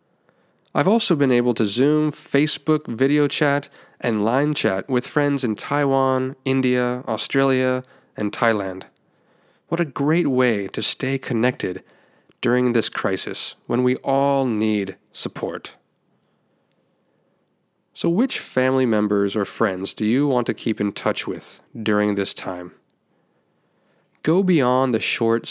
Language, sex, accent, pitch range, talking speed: English, male, American, 110-145 Hz, 130 wpm